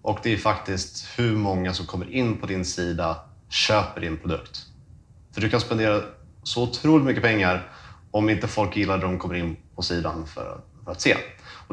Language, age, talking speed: Swedish, 30-49, 190 wpm